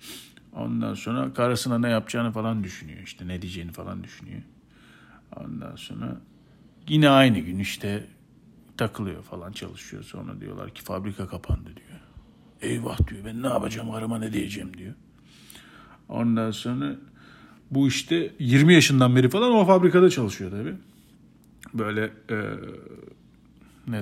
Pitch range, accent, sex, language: 95-115 Hz, native, male, Turkish